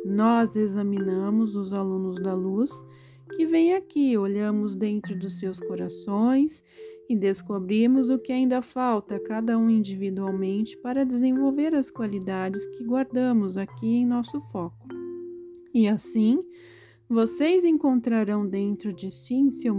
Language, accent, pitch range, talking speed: Portuguese, Brazilian, 195-255 Hz, 125 wpm